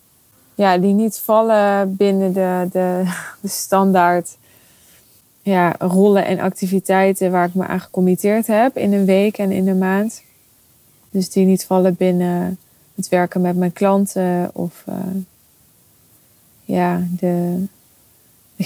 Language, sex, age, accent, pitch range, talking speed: Dutch, female, 20-39, Dutch, 180-200 Hz, 130 wpm